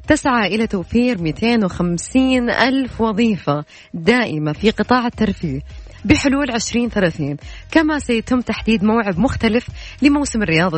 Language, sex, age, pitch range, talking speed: Arabic, female, 20-39, 200-270 Hz, 105 wpm